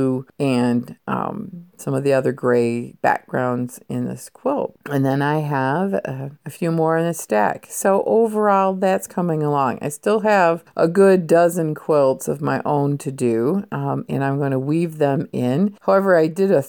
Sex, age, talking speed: female, 50-69, 185 wpm